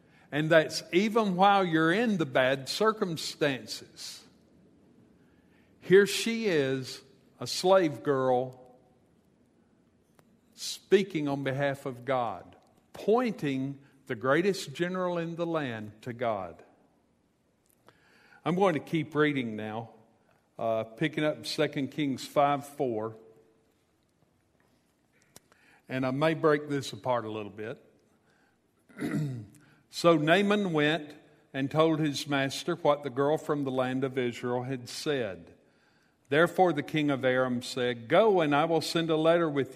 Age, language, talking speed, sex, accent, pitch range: 50-69, English, 125 wpm, male, American, 130-165 Hz